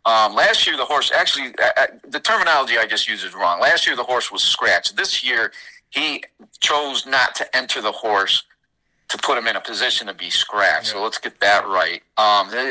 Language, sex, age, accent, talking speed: English, male, 50-69, American, 210 wpm